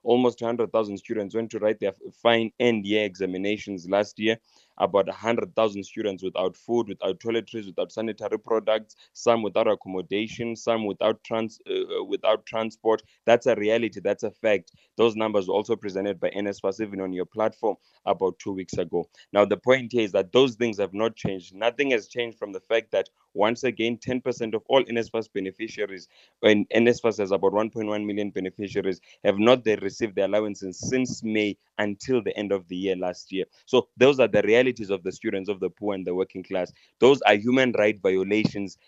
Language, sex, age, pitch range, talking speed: English, male, 20-39, 100-120 Hz, 185 wpm